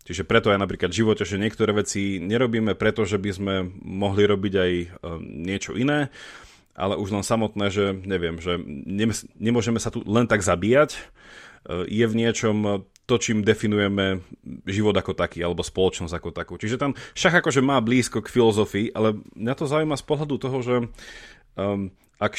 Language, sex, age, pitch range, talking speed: Slovak, male, 30-49, 95-125 Hz, 165 wpm